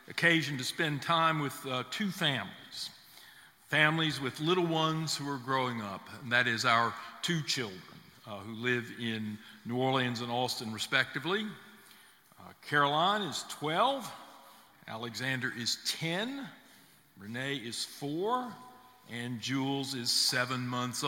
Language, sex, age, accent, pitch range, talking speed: English, male, 50-69, American, 125-160 Hz, 130 wpm